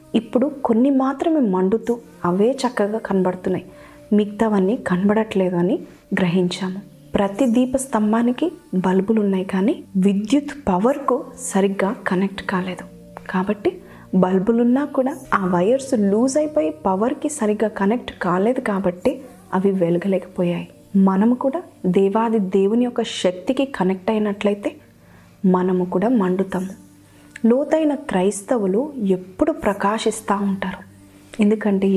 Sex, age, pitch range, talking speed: female, 20-39, 185-250 Hz, 100 wpm